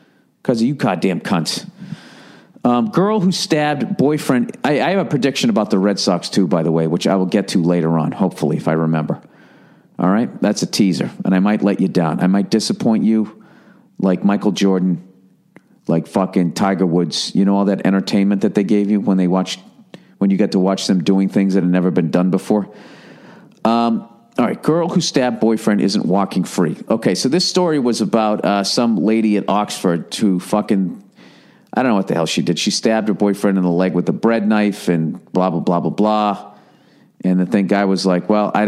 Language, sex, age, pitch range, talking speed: English, male, 50-69, 95-135 Hz, 215 wpm